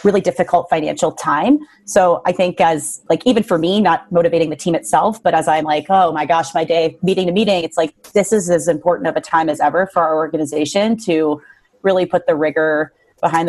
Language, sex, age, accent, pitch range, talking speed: English, female, 30-49, American, 155-195 Hz, 220 wpm